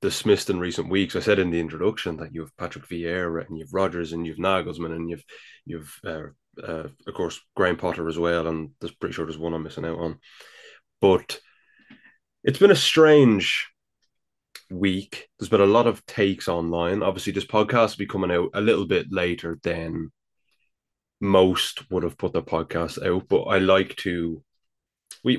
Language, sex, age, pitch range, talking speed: English, male, 20-39, 85-105 Hz, 185 wpm